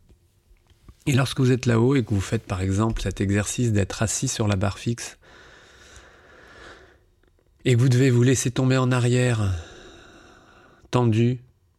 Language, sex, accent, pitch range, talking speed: French, male, French, 95-115 Hz, 150 wpm